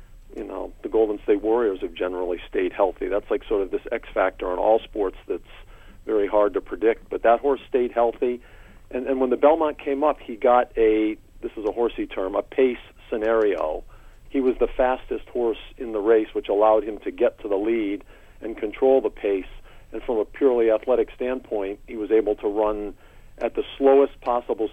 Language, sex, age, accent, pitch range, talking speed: English, male, 50-69, American, 110-150 Hz, 200 wpm